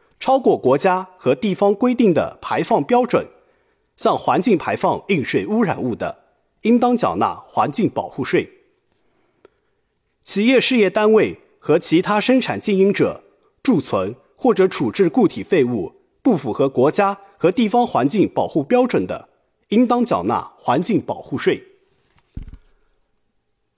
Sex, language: male, Chinese